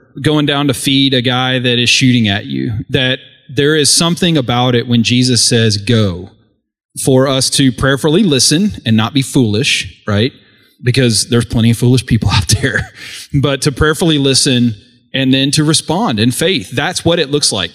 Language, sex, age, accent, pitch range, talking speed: English, male, 30-49, American, 115-145 Hz, 185 wpm